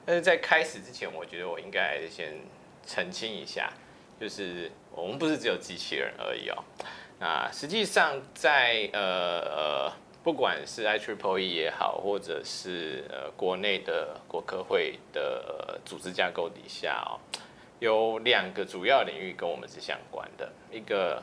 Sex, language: male, Chinese